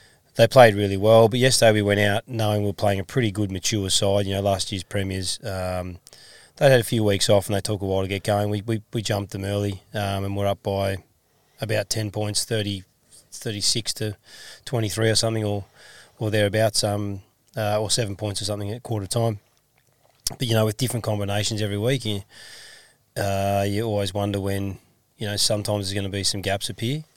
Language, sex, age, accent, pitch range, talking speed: English, male, 20-39, Australian, 100-115 Hz, 210 wpm